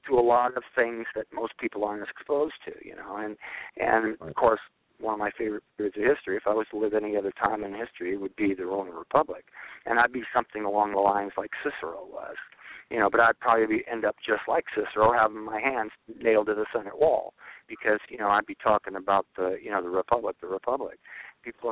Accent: American